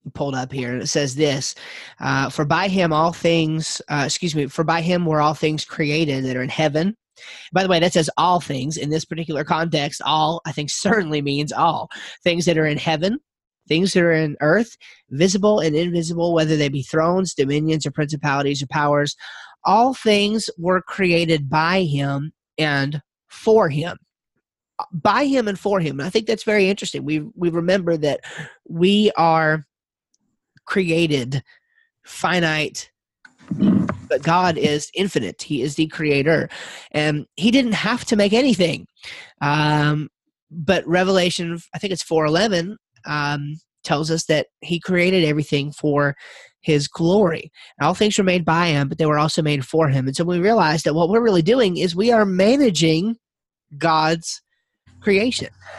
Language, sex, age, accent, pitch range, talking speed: English, male, 30-49, American, 150-185 Hz, 165 wpm